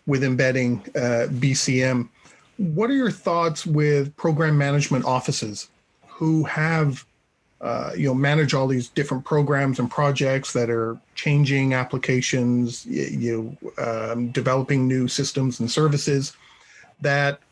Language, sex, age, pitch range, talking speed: English, male, 40-59, 130-155 Hz, 125 wpm